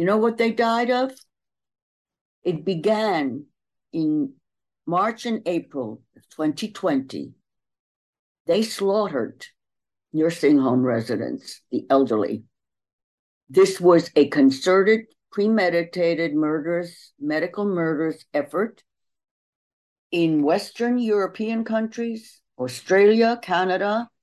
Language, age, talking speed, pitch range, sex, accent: English, 60-79, 90 wpm, 150-220 Hz, female, American